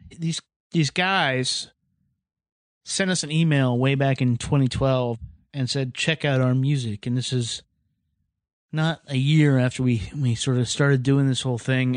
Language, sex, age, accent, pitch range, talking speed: English, male, 30-49, American, 125-145 Hz, 165 wpm